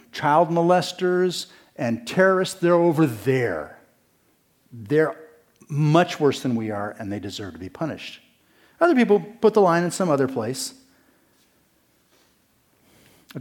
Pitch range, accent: 125-185 Hz, American